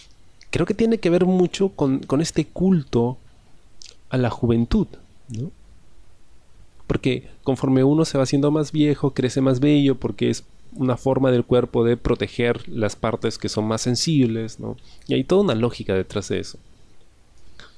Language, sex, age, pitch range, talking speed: Spanish, male, 30-49, 110-150 Hz, 155 wpm